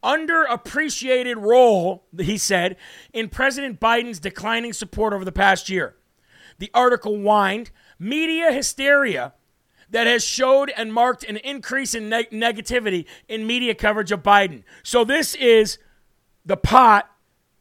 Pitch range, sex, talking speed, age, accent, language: 200-250 Hz, male, 125 wpm, 40-59, American, English